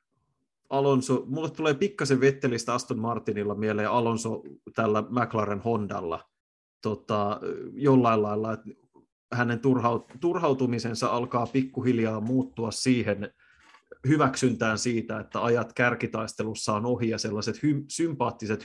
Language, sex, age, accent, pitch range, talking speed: Finnish, male, 30-49, native, 110-130 Hz, 105 wpm